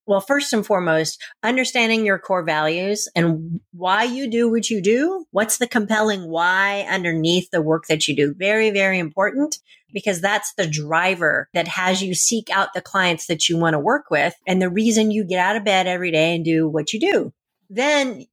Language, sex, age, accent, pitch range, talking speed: English, female, 40-59, American, 170-220 Hz, 200 wpm